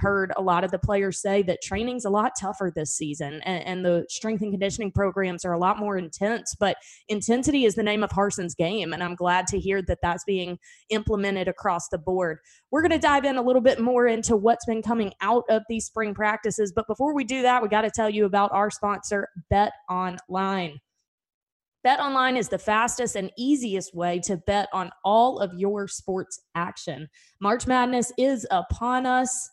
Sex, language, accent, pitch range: female, English, American, 185-230 Hz